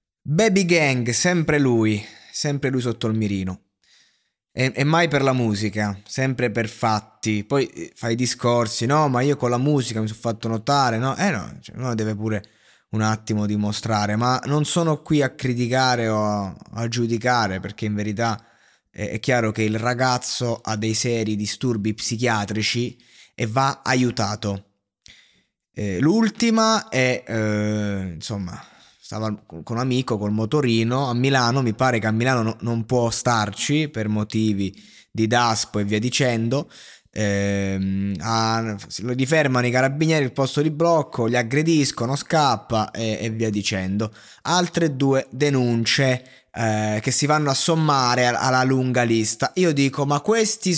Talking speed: 150 wpm